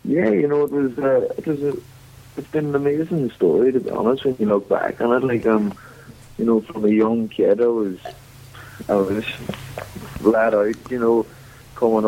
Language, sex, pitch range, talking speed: English, male, 100-125 Hz, 200 wpm